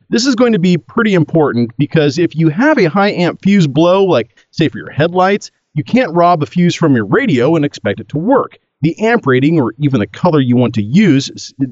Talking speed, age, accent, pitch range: 230 wpm, 40-59, American, 125-175 Hz